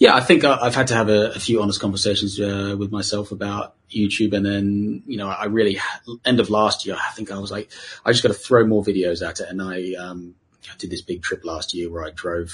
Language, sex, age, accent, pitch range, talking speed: Italian, male, 30-49, British, 90-110 Hz, 260 wpm